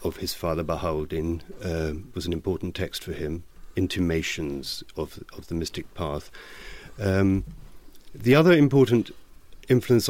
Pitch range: 85-120 Hz